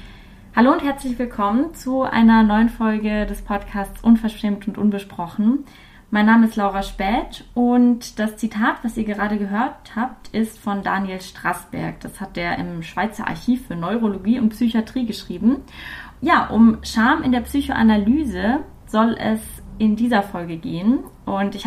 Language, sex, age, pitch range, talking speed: German, female, 20-39, 200-240 Hz, 150 wpm